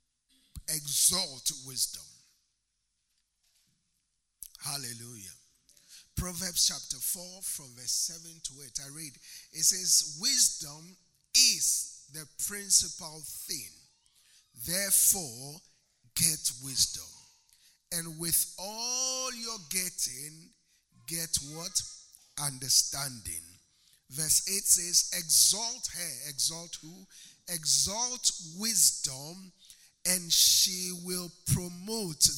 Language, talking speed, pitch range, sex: English, 80 wpm, 140-185 Hz, male